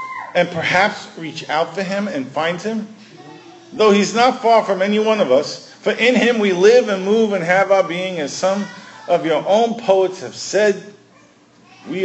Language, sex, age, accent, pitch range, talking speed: English, male, 50-69, American, 175-235 Hz, 190 wpm